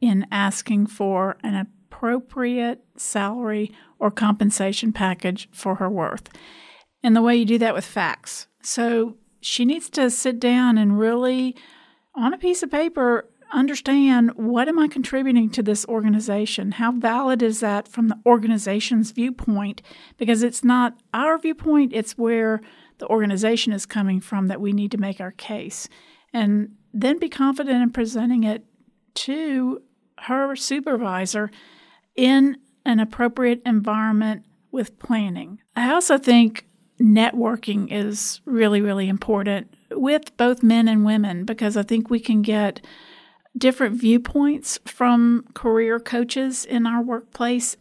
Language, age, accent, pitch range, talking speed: English, 50-69, American, 210-250 Hz, 140 wpm